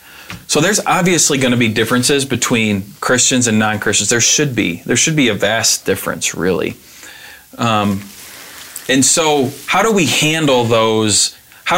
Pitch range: 110-135 Hz